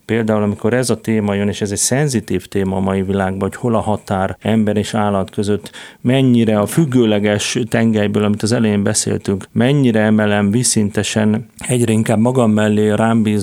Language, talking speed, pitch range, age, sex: Hungarian, 170 wpm, 105-115 Hz, 40-59, male